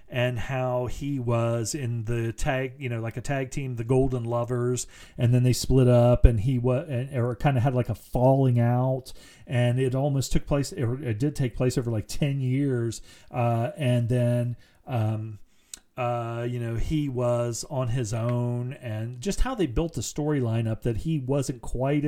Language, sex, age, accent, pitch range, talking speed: English, male, 40-59, American, 120-140 Hz, 190 wpm